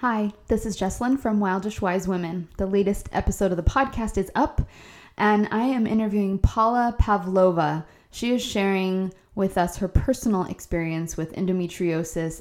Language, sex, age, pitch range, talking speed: English, female, 20-39, 175-210 Hz, 155 wpm